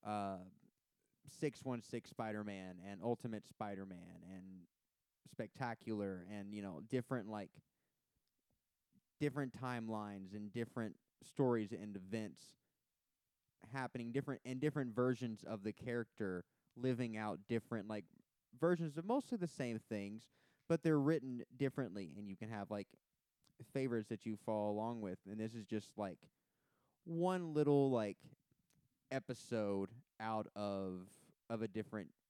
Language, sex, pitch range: English, male, 100-125 Hz